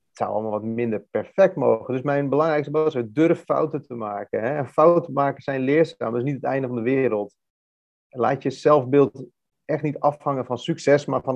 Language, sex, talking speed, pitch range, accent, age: Dutch, male, 205 wpm, 125-145 Hz, Dutch, 40-59